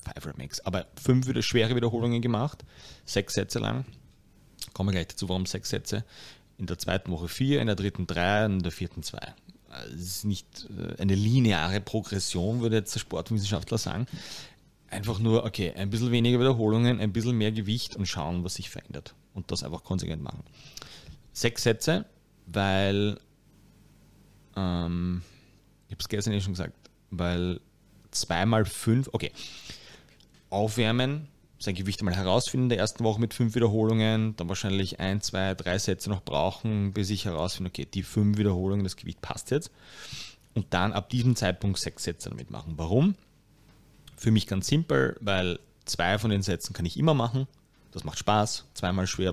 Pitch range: 95-115 Hz